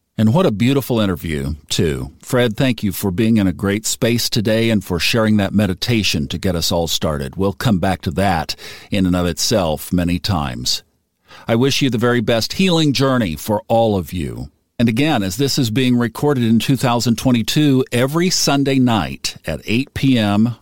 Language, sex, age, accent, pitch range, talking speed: English, male, 50-69, American, 100-125 Hz, 185 wpm